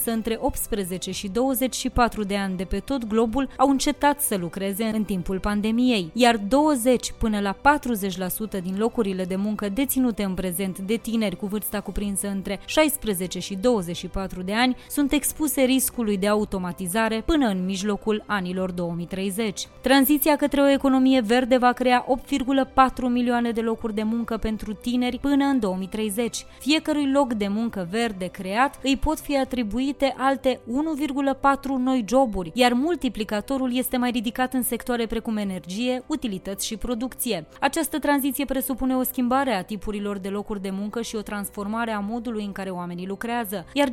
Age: 20-39